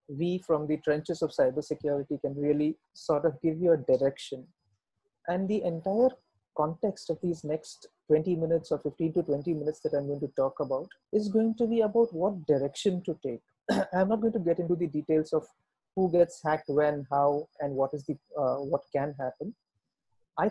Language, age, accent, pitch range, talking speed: English, 40-59, Indian, 150-200 Hz, 195 wpm